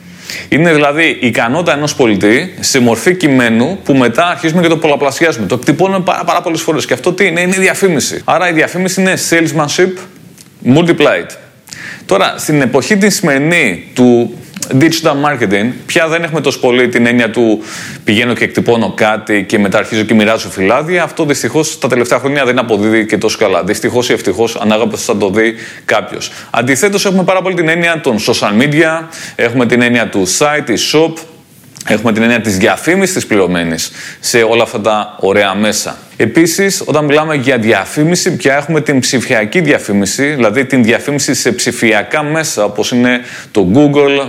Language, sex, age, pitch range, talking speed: Greek, male, 20-39, 115-160 Hz, 170 wpm